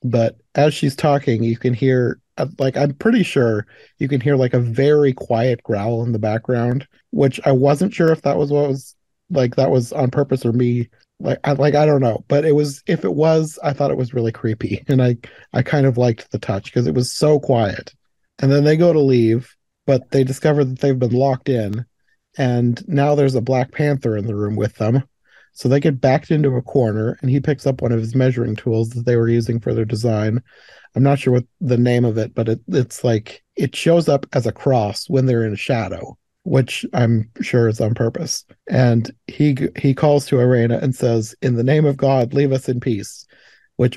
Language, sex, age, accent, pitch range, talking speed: English, male, 30-49, American, 115-140 Hz, 220 wpm